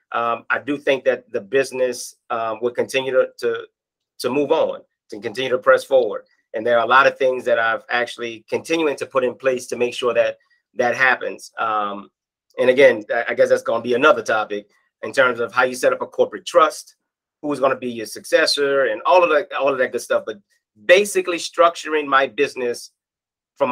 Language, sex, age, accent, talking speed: English, male, 30-49, American, 205 wpm